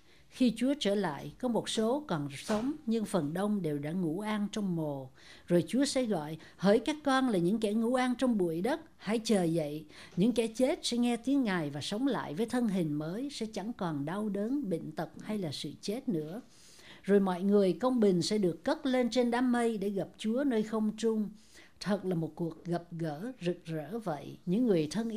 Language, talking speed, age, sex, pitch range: Vietnamese, 220 wpm, 60-79, female, 175-240 Hz